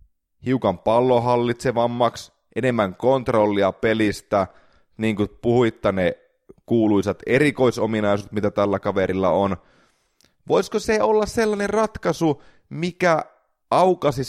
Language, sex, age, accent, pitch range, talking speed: Finnish, male, 30-49, native, 100-140 Hz, 90 wpm